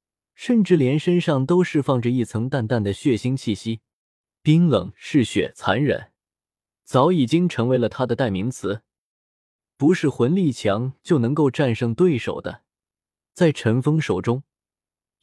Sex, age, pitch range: male, 20-39, 115-170 Hz